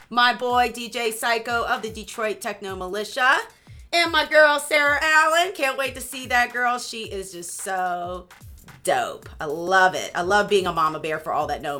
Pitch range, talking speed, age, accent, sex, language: 200-250 Hz, 195 wpm, 30-49, American, female, English